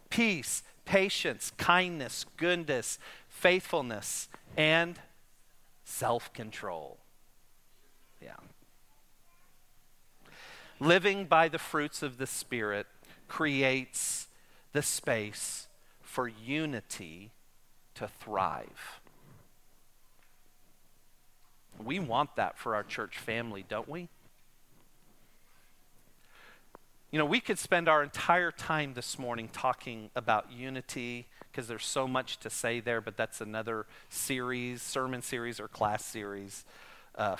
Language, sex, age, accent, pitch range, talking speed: English, male, 40-59, American, 115-155 Hz, 100 wpm